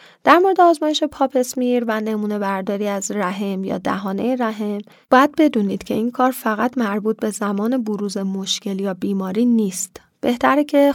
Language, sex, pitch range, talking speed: Persian, female, 200-245 Hz, 160 wpm